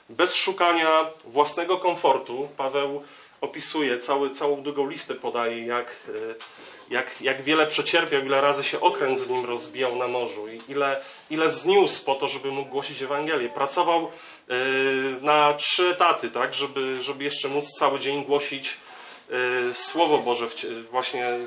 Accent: native